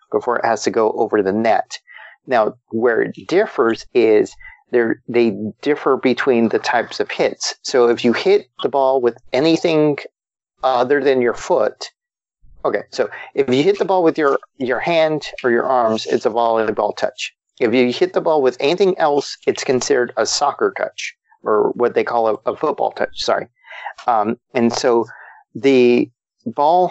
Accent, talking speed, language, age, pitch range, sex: American, 170 wpm, English, 40-59, 125-180 Hz, male